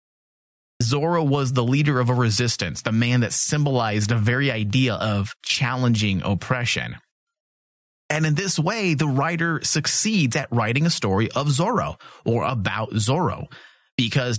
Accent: American